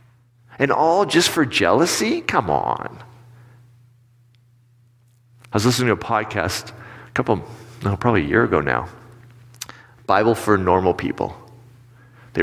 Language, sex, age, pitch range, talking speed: English, male, 50-69, 110-125 Hz, 125 wpm